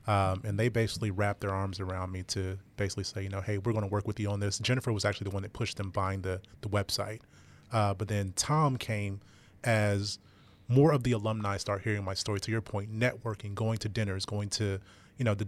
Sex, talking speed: male, 235 wpm